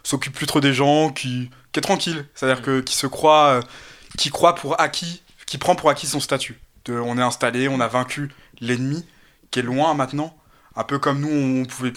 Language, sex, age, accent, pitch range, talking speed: French, male, 20-39, French, 120-145 Hz, 210 wpm